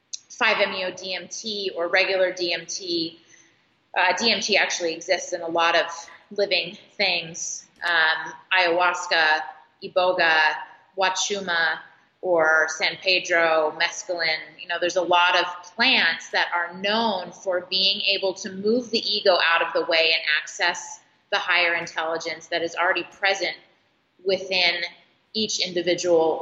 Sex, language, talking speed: female, English, 125 wpm